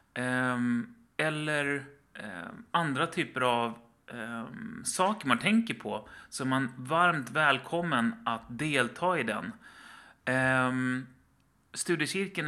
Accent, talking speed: native, 85 wpm